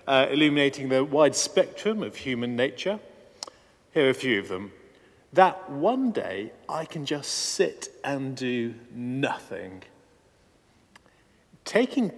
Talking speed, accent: 125 wpm, British